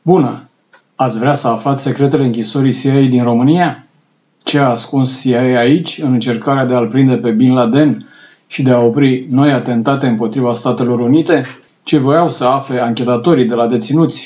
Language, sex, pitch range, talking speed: Romanian, male, 120-140 Hz, 170 wpm